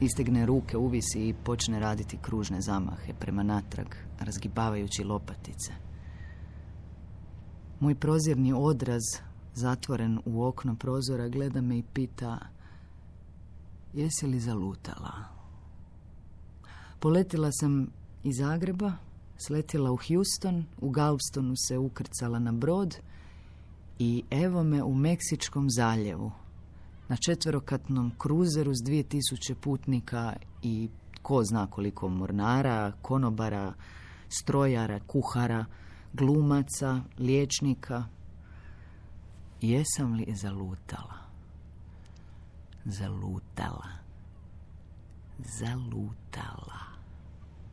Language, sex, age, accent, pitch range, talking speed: Croatian, female, 40-59, native, 90-130 Hz, 85 wpm